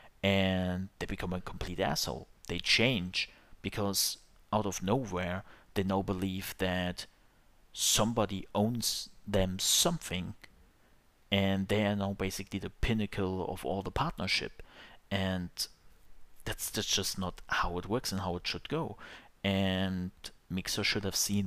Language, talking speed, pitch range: English, 135 wpm, 95-105 Hz